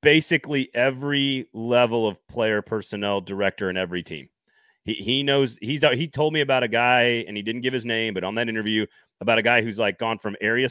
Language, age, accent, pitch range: English, 30-49, American, 105-130 Hz